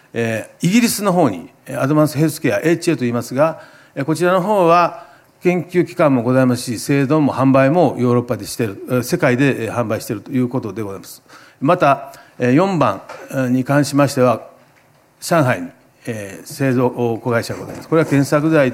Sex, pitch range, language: male, 125-160 Hz, Japanese